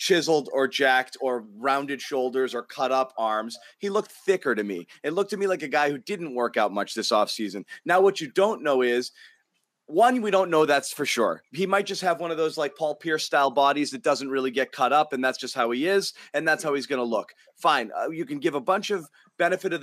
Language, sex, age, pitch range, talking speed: English, male, 30-49, 145-190 Hz, 250 wpm